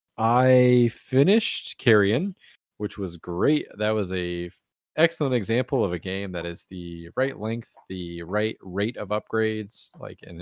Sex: male